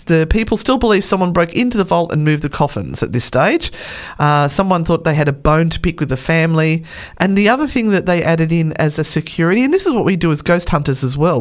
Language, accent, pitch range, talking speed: English, Australian, 140-185 Hz, 265 wpm